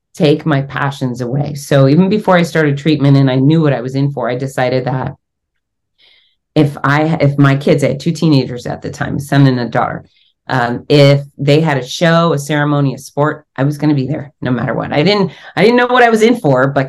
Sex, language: female, English